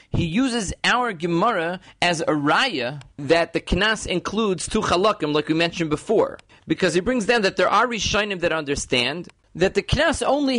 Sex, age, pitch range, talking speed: male, 40-59, 160-215 Hz, 175 wpm